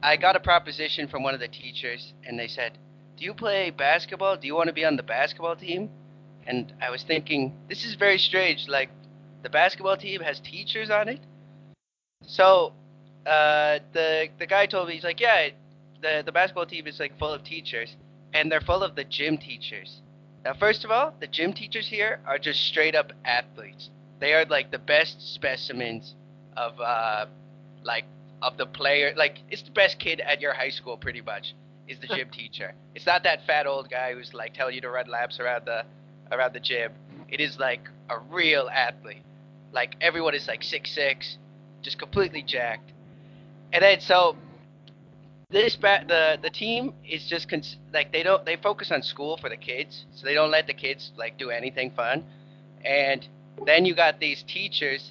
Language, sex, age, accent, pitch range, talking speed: English, male, 20-39, American, 140-165 Hz, 195 wpm